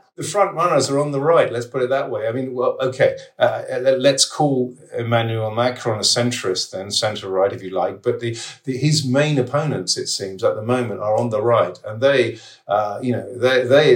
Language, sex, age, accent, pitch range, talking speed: English, male, 50-69, British, 110-135 Hz, 215 wpm